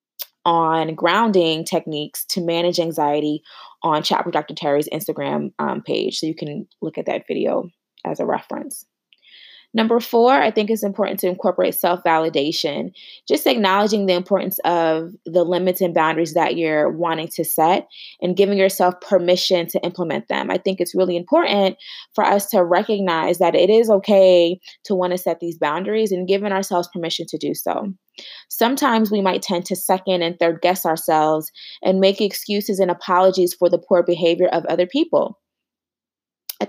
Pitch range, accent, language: 170-205 Hz, American, English